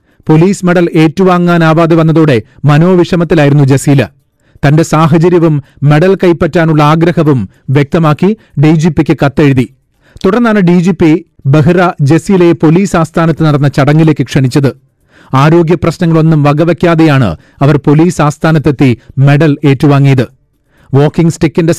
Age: 40-59